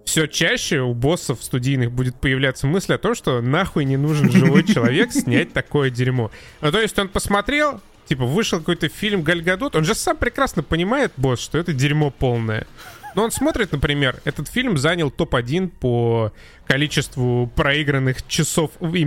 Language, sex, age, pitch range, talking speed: Russian, male, 20-39, 125-175 Hz, 165 wpm